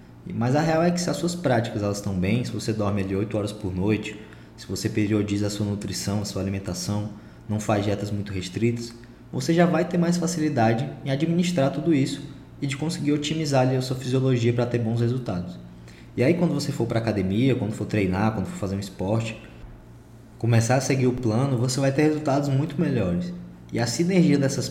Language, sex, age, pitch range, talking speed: Portuguese, male, 20-39, 105-145 Hz, 205 wpm